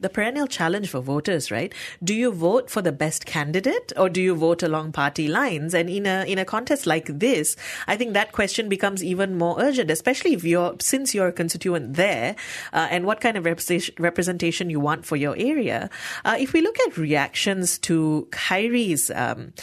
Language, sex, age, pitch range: English, female, 30-49, 160-210 Hz